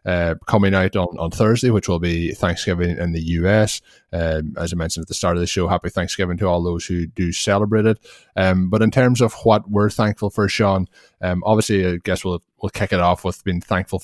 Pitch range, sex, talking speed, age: 90-100 Hz, male, 230 wpm, 20-39